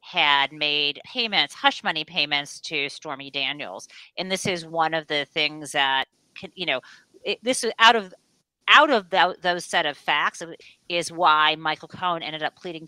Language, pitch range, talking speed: English, 155-205 Hz, 180 wpm